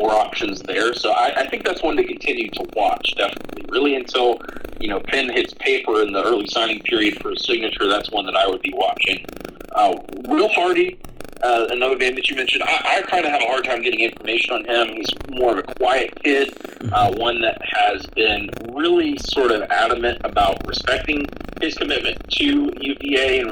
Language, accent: English, American